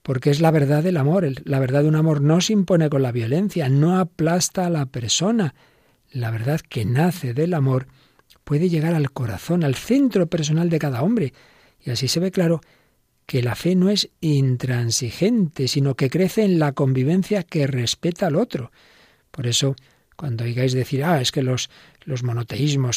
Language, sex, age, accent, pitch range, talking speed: Spanish, male, 50-69, Spanish, 130-160 Hz, 185 wpm